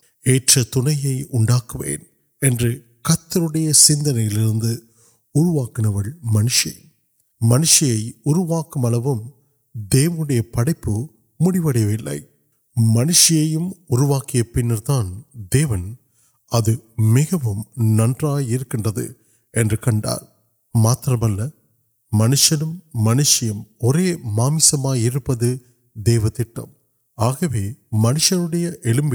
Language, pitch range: Urdu, 115-150 Hz